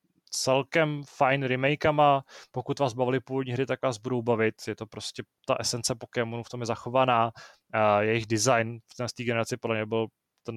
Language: Czech